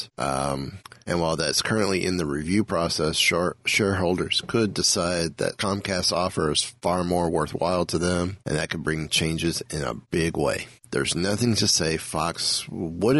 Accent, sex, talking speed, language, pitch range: American, male, 165 wpm, English, 85-95 Hz